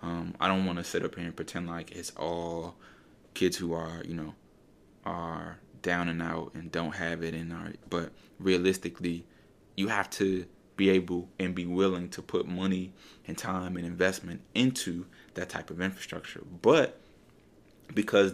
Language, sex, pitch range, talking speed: English, male, 85-95 Hz, 170 wpm